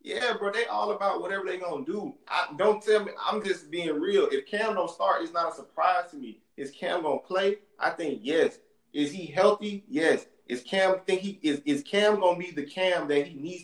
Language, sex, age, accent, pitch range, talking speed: English, male, 20-39, American, 145-195 Hz, 230 wpm